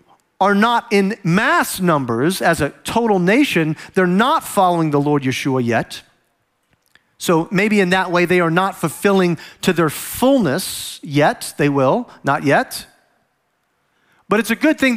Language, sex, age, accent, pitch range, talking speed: English, male, 40-59, American, 150-215 Hz, 150 wpm